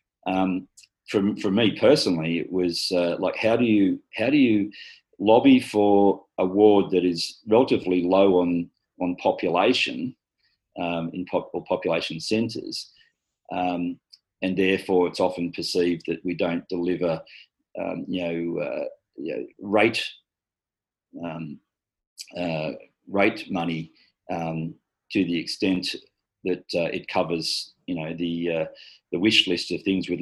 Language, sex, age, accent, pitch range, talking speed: English, male, 40-59, Australian, 90-105 Hz, 140 wpm